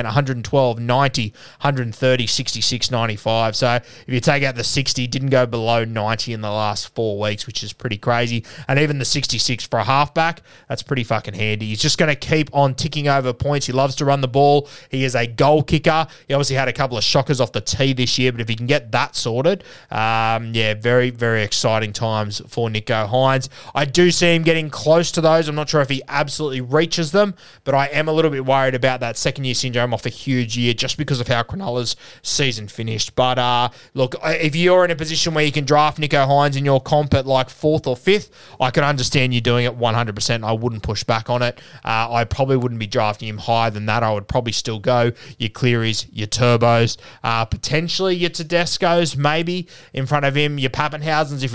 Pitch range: 115-145 Hz